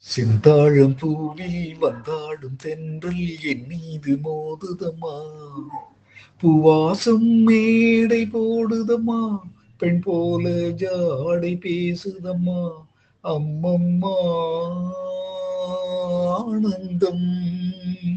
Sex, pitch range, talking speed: male, 165-195 Hz, 55 wpm